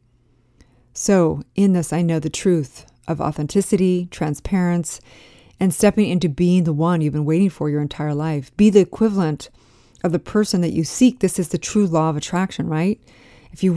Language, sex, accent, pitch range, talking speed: English, female, American, 155-195 Hz, 185 wpm